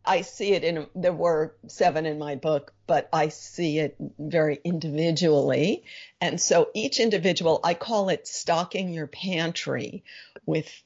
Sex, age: female, 50-69